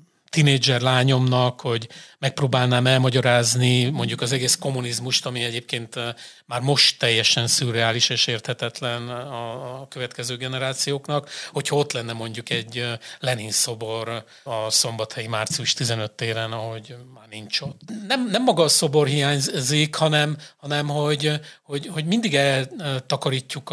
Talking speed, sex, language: 125 wpm, male, Hungarian